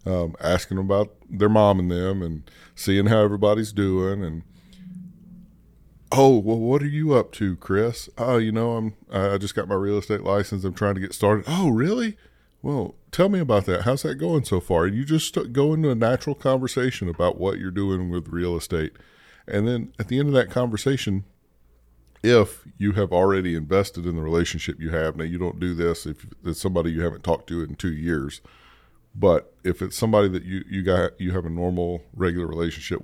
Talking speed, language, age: 200 wpm, English, 40-59